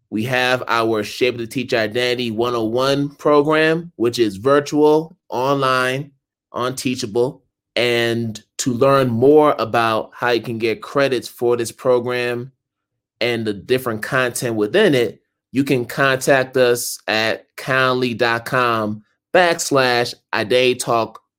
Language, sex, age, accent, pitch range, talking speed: English, male, 20-39, American, 115-135 Hz, 120 wpm